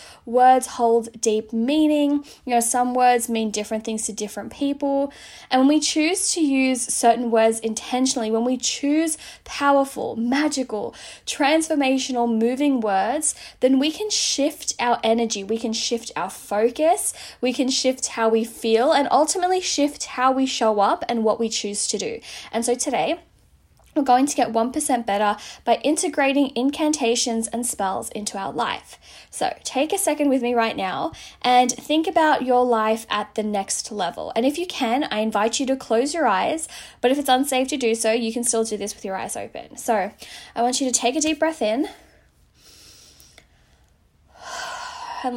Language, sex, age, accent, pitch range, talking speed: English, female, 10-29, Australian, 225-290 Hz, 175 wpm